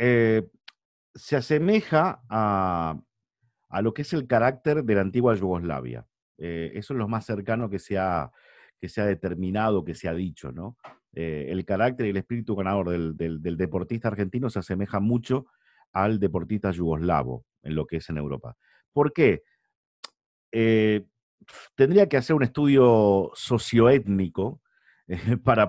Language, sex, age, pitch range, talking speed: Spanish, male, 50-69, 90-120 Hz, 155 wpm